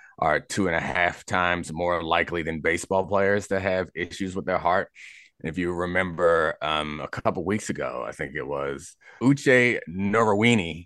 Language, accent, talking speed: English, American, 175 wpm